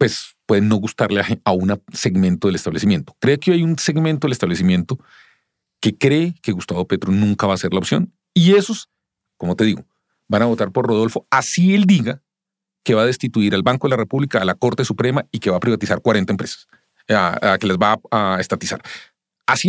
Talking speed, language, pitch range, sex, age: 215 wpm, English, 100-145 Hz, male, 40-59